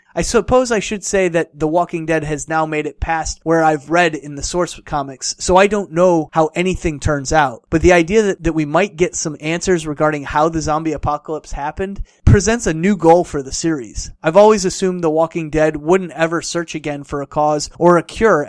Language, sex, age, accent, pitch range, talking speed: English, male, 30-49, American, 150-185 Hz, 220 wpm